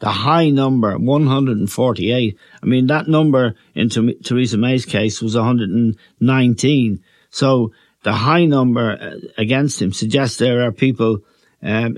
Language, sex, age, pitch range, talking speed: English, male, 60-79, 115-140 Hz, 130 wpm